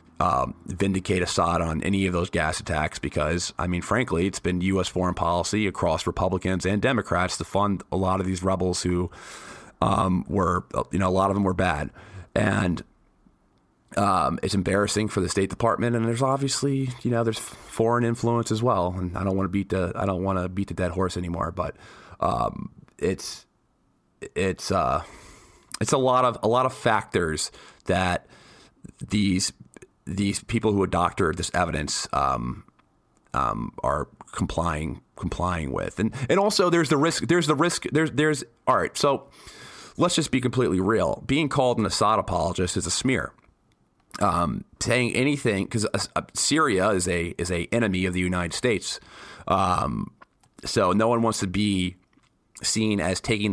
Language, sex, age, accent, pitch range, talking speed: English, male, 30-49, American, 90-115 Hz, 170 wpm